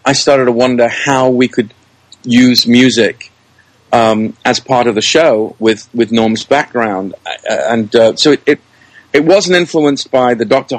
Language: English